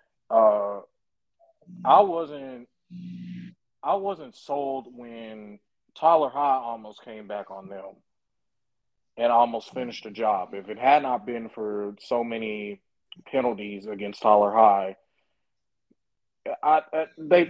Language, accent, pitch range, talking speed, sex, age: English, American, 110-150 Hz, 115 wpm, male, 30-49